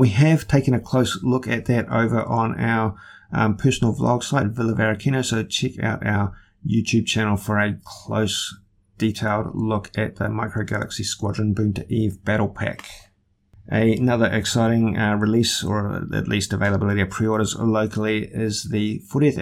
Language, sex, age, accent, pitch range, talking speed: English, male, 30-49, Australian, 100-120 Hz, 160 wpm